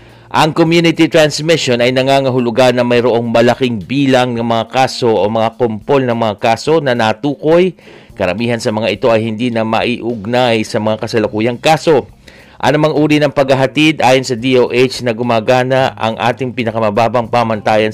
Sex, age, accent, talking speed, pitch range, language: male, 50-69, native, 155 wpm, 110-135 Hz, Filipino